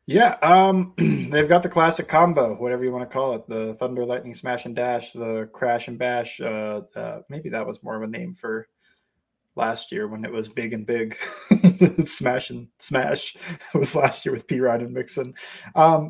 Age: 20-39